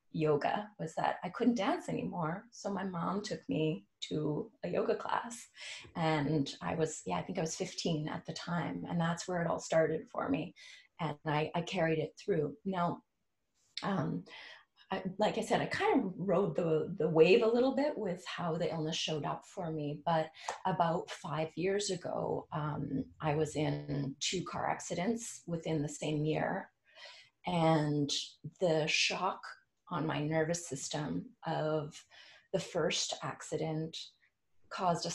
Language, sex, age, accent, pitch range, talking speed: English, female, 30-49, American, 150-175 Hz, 160 wpm